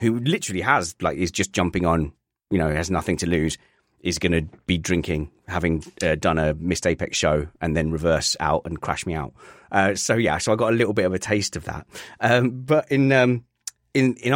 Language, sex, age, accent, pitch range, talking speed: English, male, 30-49, British, 85-120 Hz, 220 wpm